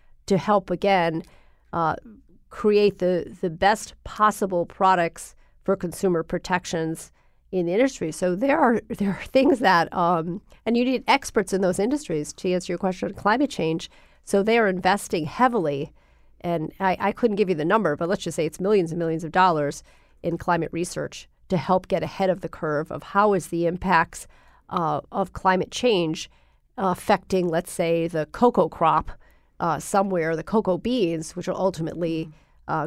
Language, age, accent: English, 40-59, American